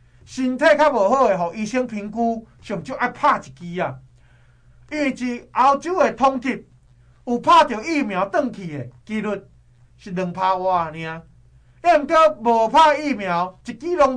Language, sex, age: Chinese, male, 20-39